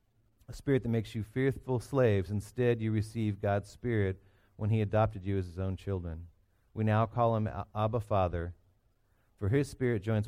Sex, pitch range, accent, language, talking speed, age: male, 95-115 Hz, American, English, 170 wpm, 40-59